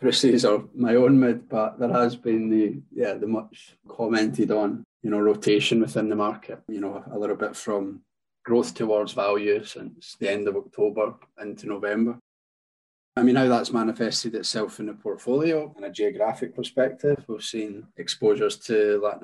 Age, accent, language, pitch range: 20-39, British, English, 105-135 Hz